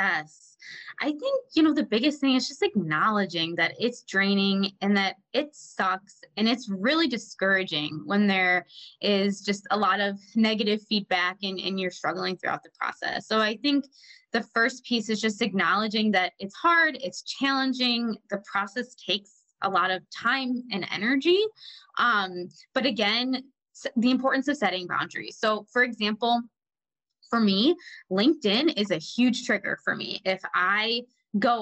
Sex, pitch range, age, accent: female, 195-250 Hz, 20-39, American